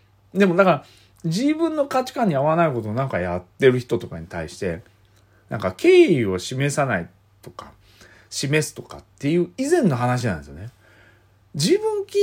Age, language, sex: 40-59, Japanese, male